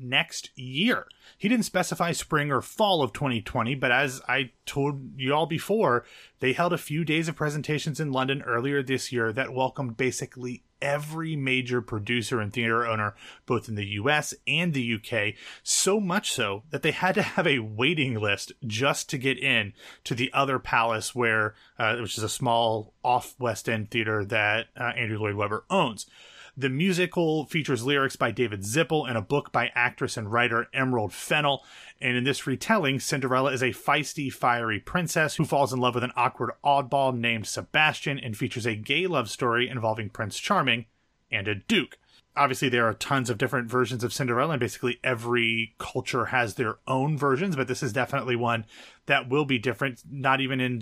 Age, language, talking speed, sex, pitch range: 30-49, English, 185 wpm, male, 120-140 Hz